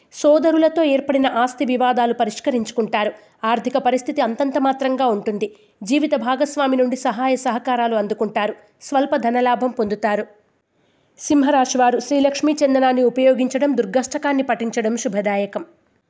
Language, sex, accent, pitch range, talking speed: Telugu, female, native, 230-280 Hz, 95 wpm